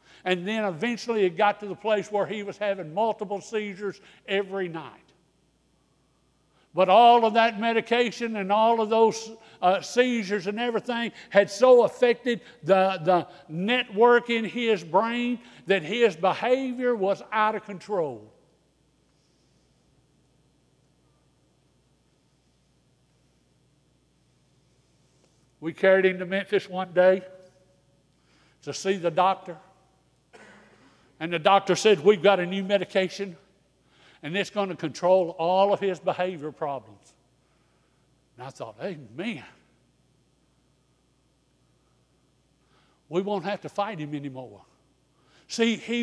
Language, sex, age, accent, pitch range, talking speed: English, male, 60-79, American, 180-220 Hz, 115 wpm